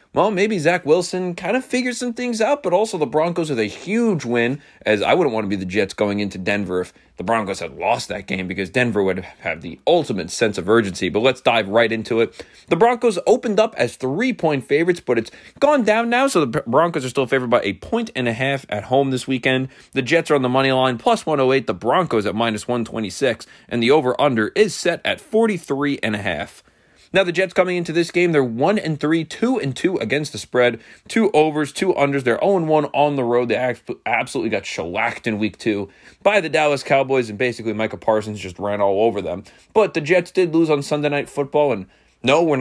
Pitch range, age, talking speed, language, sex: 115-180 Hz, 30-49, 220 wpm, English, male